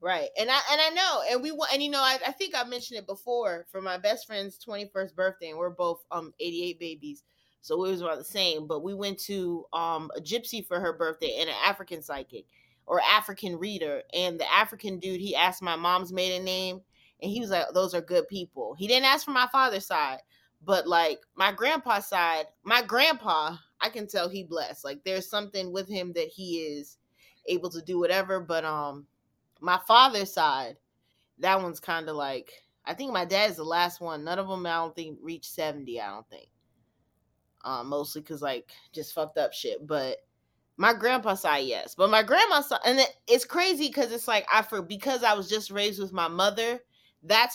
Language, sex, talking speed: English, female, 210 wpm